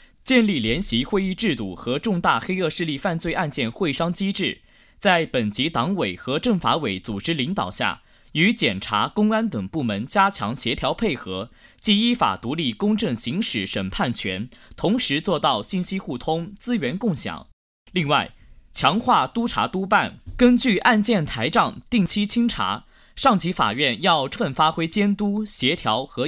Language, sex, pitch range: Chinese, male, 165-220 Hz